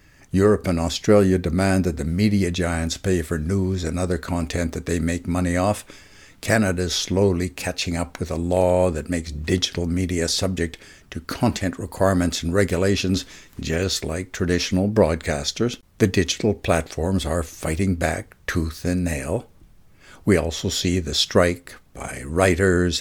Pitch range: 85-105 Hz